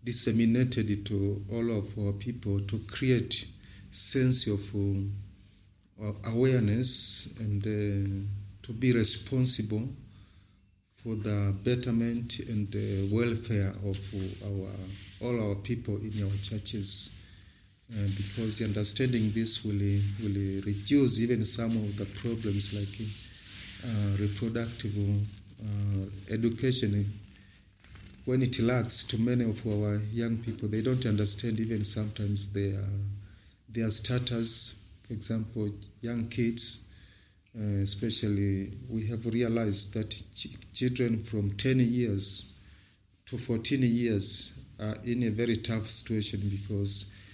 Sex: male